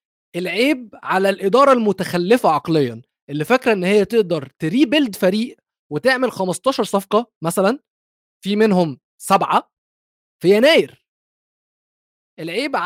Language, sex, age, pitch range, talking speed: Arabic, male, 20-39, 190-245 Hz, 105 wpm